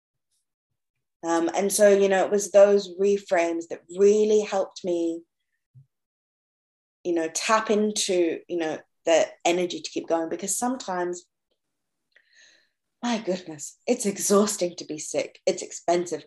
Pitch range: 175-220 Hz